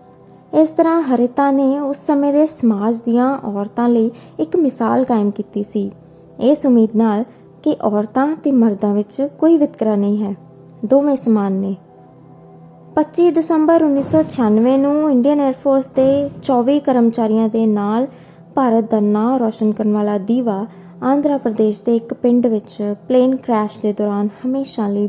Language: Hindi